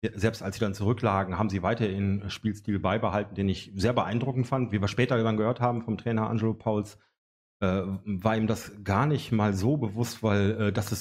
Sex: male